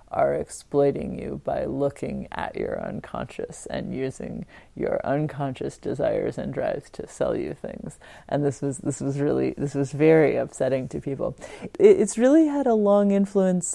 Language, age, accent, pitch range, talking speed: English, 30-49, American, 145-185 Hz, 160 wpm